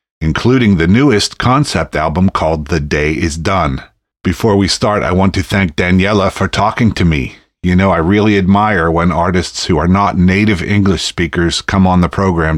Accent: American